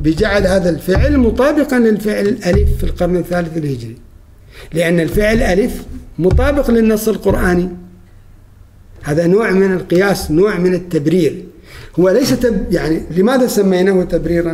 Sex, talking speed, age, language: male, 125 wpm, 50-69, Arabic